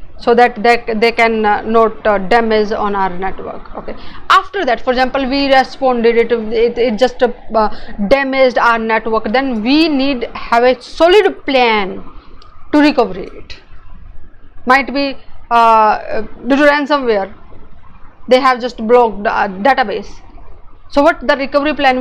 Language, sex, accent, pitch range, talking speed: English, female, Indian, 225-280 Hz, 150 wpm